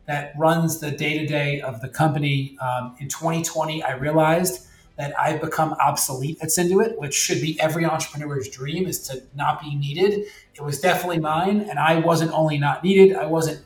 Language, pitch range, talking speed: English, 145-175 Hz, 180 wpm